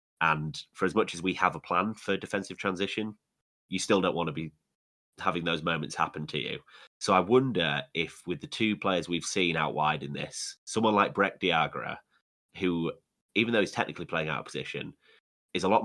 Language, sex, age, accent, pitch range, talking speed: English, male, 30-49, British, 80-95 Hz, 205 wpm